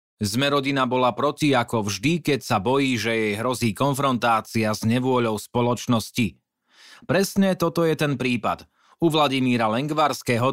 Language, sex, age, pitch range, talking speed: Slovak, male, 30-49, 120-145 Hz, 130 wpm